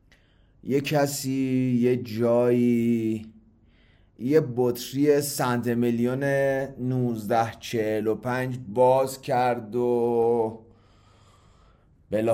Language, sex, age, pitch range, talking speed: Persian, male, 30-49, 100-135 Hz, 70 wpm